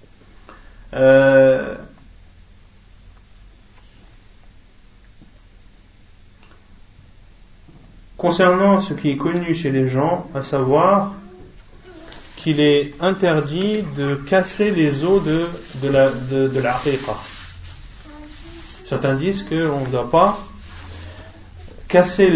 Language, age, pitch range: French, 30-49, 110-170 Hz